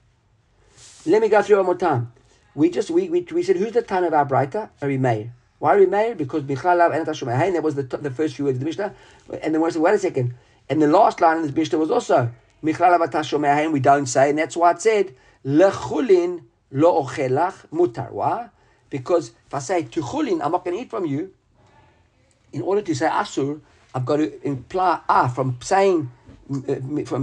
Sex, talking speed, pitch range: male, 190 wpm, 125-185 Hz